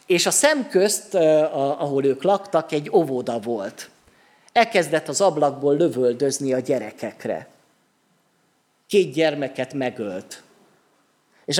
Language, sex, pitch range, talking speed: Hungarian, male, 140-195 Hz, 100 wpm